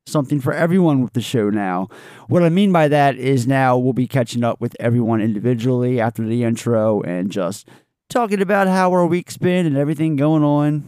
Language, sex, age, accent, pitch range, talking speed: English, male, 30-49, American, 110-145 Hz, 200 wpm